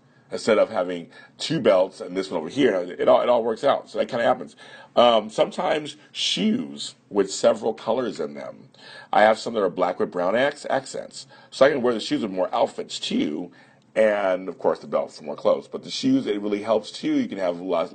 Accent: American